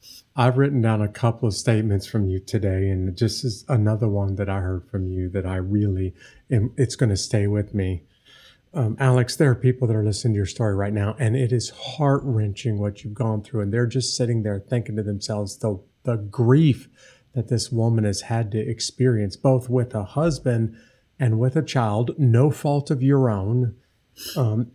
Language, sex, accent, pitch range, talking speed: English, male, American, 110-130 Hz, 200 wpm